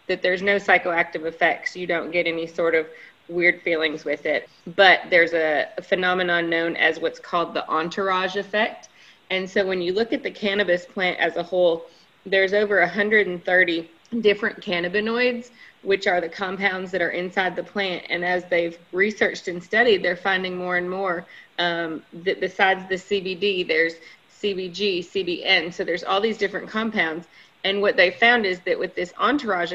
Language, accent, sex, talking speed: English, American, female, 175 wpm